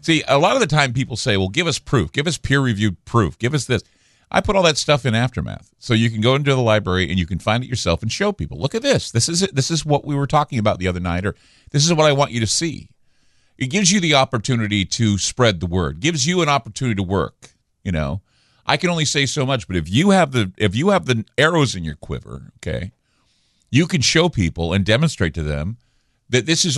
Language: English